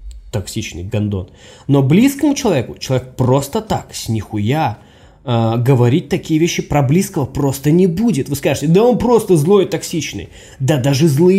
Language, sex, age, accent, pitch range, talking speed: Russian, male, 20-39, native, 115-185 Hz, 160 wpm